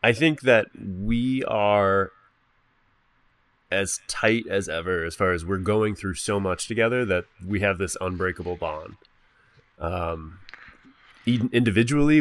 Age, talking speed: 20-39, 135 wpm